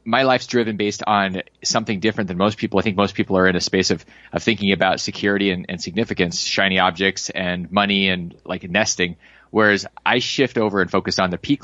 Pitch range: 95-110 Hz